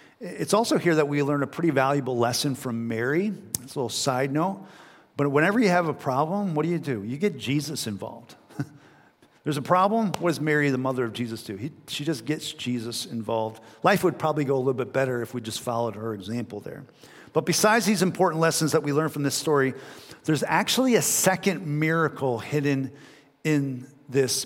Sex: male